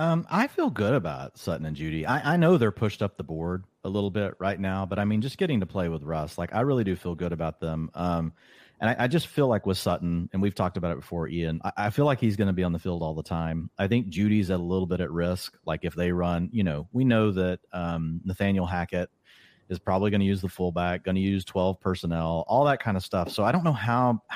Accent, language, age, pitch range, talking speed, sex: American, English, 30-49, 85-110 Hz, 275 wpm, male